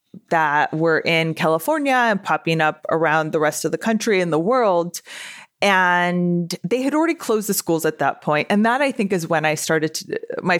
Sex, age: female, 20-39